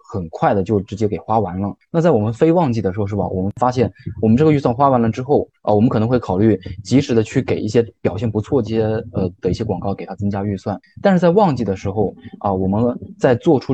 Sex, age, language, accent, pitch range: male, 20-39, Chinese, native, 100-125 Hz